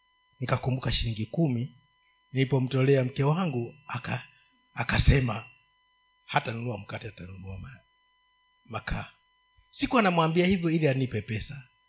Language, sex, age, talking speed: Swahili, male, 50-69, 90 wpm